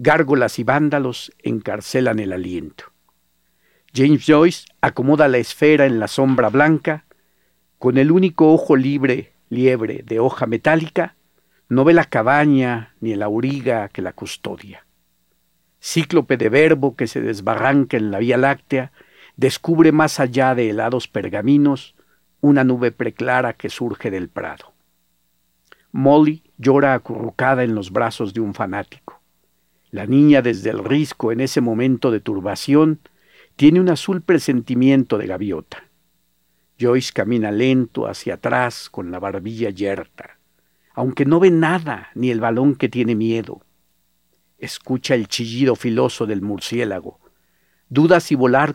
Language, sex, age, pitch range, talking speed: Spanish, male, 50-69, 110-145 Hz, 135 wpm